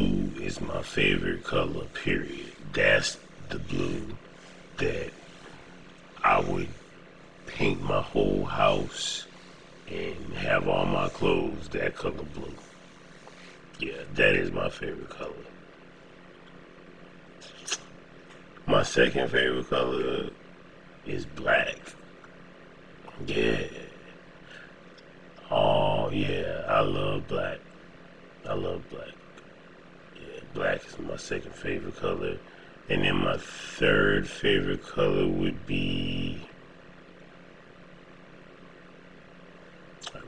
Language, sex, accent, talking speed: English, male, American, 90 wpm